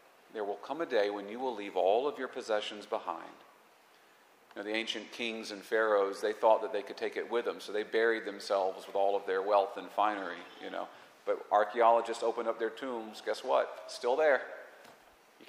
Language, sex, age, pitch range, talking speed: English, male, 40-59, 105-140 Hz, 215 wpm